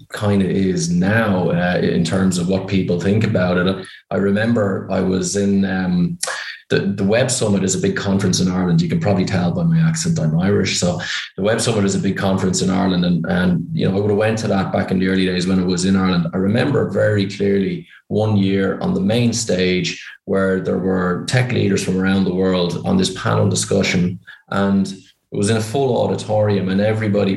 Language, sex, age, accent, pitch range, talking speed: English, male, 20-39, Irish, 95-105 Hz, 220 wpm